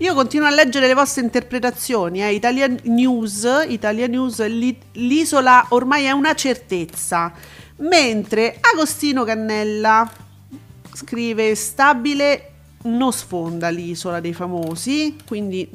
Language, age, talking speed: Italian, 40-59, 110 wpm